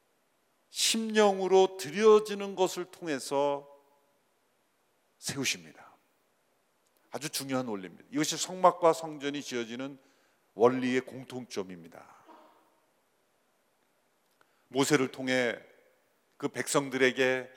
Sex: male